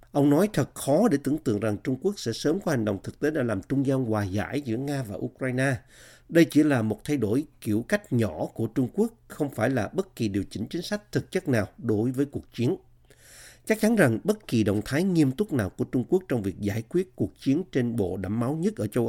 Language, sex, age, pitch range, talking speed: Vietnamese, male, 50-69, 115-145 Hz, 255 wpm